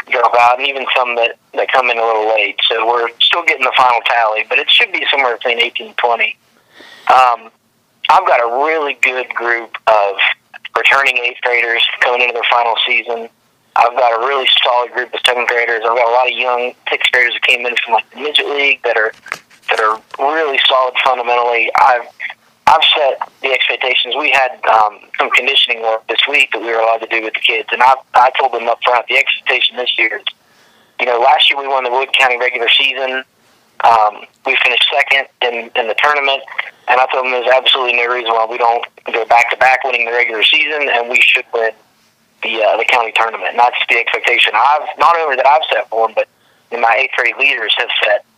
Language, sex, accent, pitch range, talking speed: English, male, American, 115-130 Hz, 220 wpm